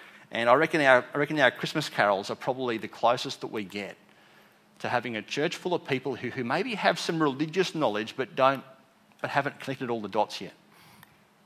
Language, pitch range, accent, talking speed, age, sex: English, 115-135 Hz, Australian, 205 wpm, 30-49, male